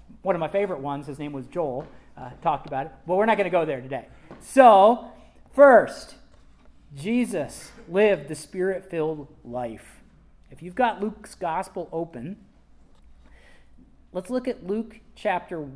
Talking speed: 150 wpm